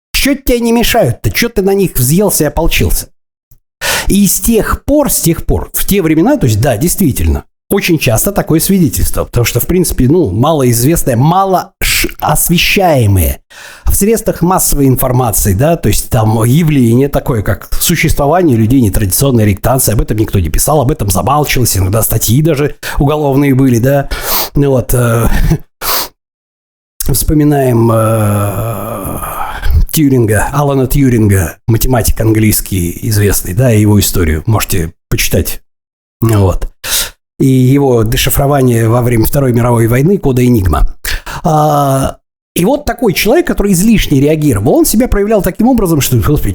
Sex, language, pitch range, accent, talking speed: male, Russian, 110-165 Hz, native, 135 wpm